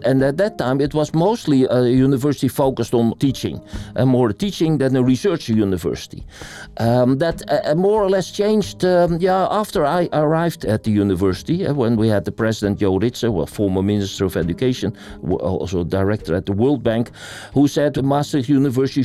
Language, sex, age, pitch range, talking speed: Ukrainian, male, 50-69, 105-145 Hz, 185 wpm